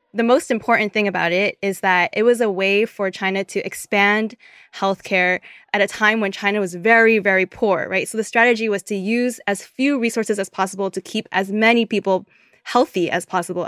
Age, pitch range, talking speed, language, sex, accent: 20-39, 190-230 Hz, 200 wpm, English, female, American